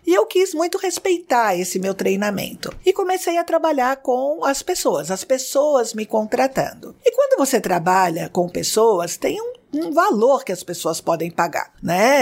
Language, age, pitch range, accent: Portuguese, 50-69, 190-300 Hz, Brazilian